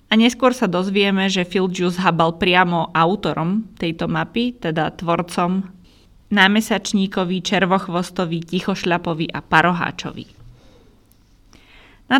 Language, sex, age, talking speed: Slovak, female, 20-39, 100 wpm